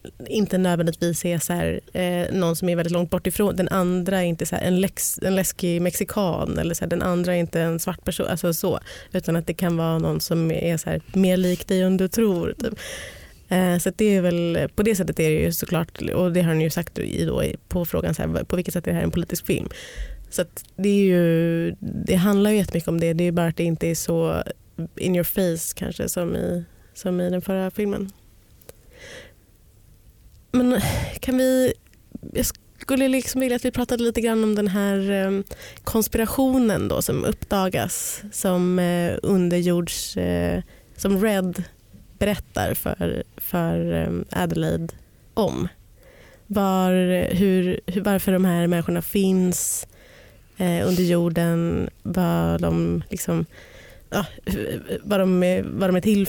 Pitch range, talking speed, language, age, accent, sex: 170-195 Hz, 175 wpm, Swedish, 20-39, native, female